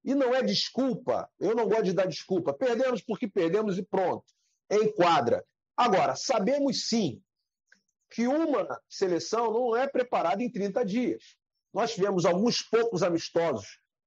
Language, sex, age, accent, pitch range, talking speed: Portuguese, male, 40-59, Brazilian, 195-255 Hz, 145 wpm